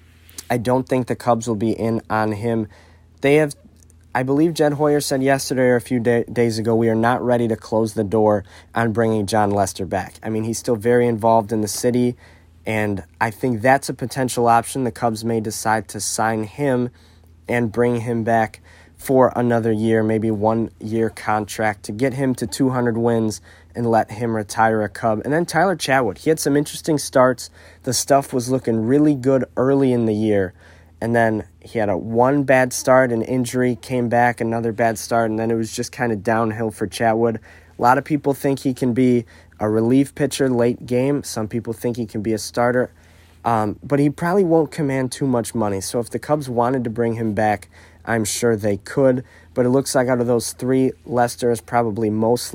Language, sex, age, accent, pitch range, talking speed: English, male, 20-39, American, 110-125 Hz, 205 wpm